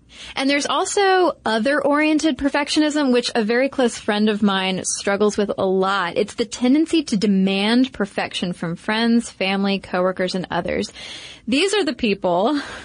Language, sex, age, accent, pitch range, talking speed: English, female, 20-39, American, 200-250 Hz, 150 wpm